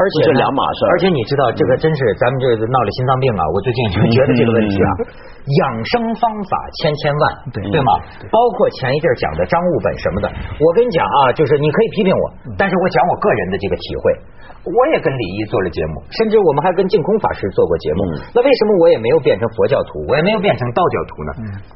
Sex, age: male, 50-69